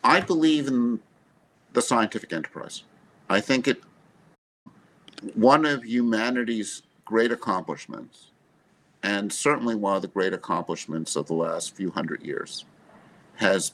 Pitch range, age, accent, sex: 95-120 Hz, 50-69, American, male